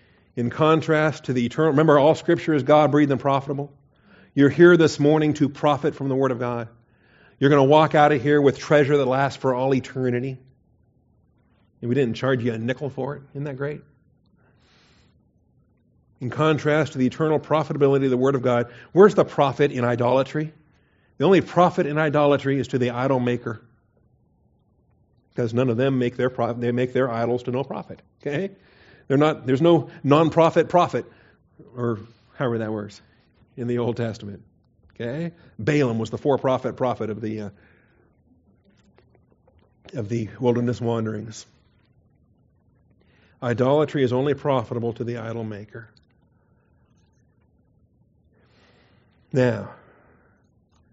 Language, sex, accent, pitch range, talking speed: English, male, American, 115-145 Hz, 145 wpm